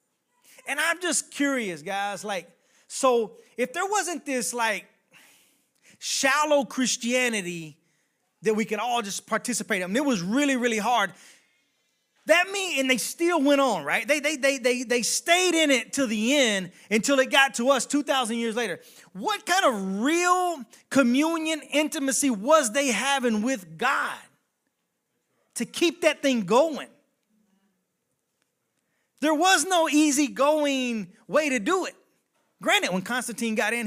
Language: English